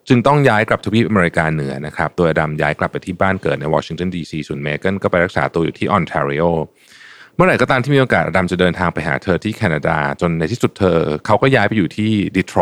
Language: Thai